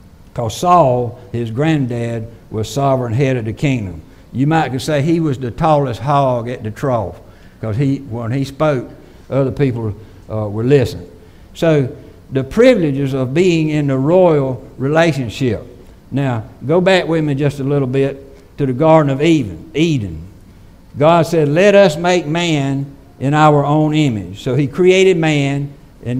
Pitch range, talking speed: 115-155 Hz, 160 wpm